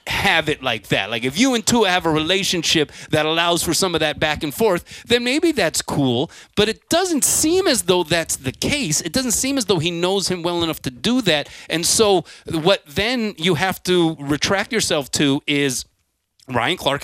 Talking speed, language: 210 wpm, English